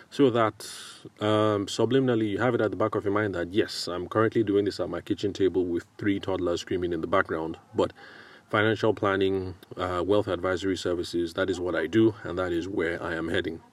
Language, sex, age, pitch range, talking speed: English, male, 30-49, 90-110 Hz, 215 wpm